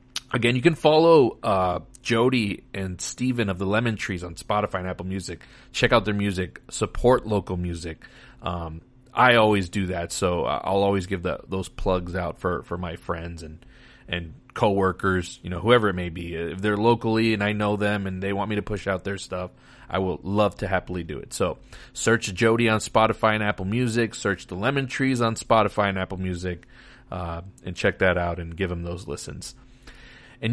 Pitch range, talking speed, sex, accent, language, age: 95-120 Hz, 200 wpm, male, American, English, 30-49